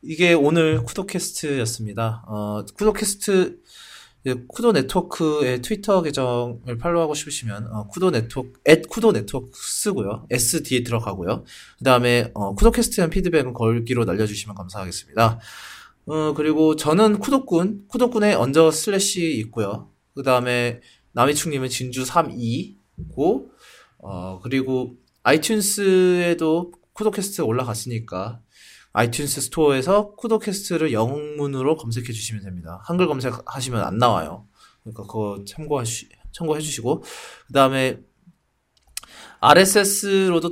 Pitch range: 115-170 Hz